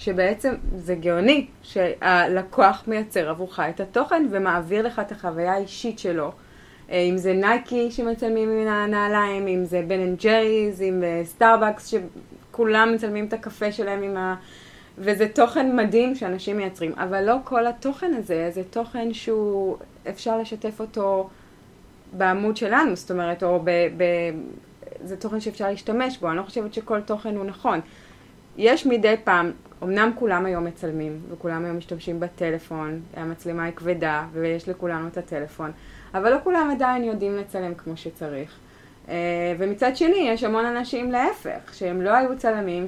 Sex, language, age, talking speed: female, Hebrew, 20-39, 145 wpm